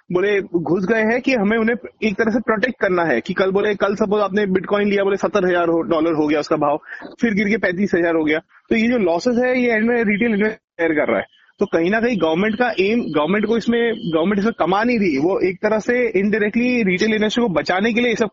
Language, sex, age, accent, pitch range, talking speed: Hindi, male, 30-49, native, 195-235 Hz, 250 wpm